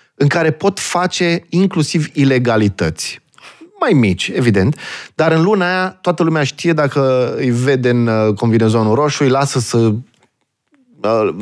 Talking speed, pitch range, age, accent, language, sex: 135 wpm, 110-160 Hz, 20-39, native, Romanian, male